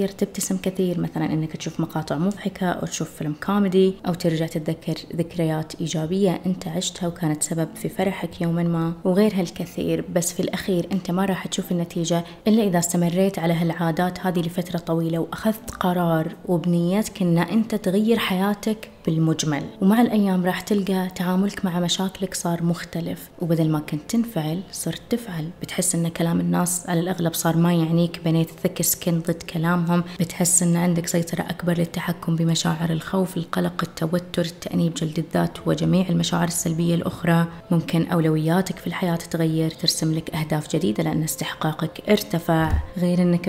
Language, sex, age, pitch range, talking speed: Arabic, female, 20-39, 165-185 Hz, 150 wpm